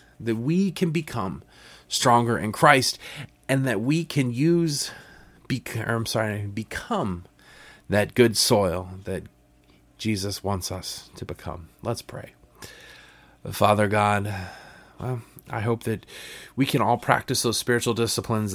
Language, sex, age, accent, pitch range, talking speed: English, male, 30-49, American, 80-120 Hz, 135 wpm